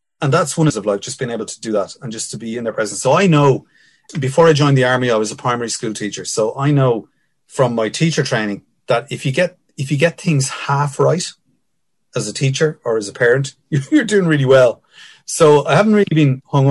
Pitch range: 115-145 Hz